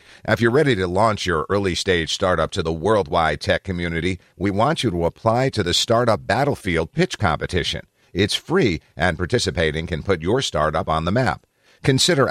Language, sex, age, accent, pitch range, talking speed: English, male, 50-69, American, 85-115 Hz, 175 wpm